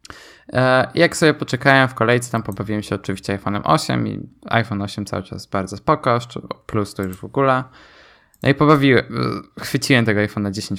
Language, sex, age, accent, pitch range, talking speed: Polish, male, 20-39, native, 105-130 Hz, 165 wpm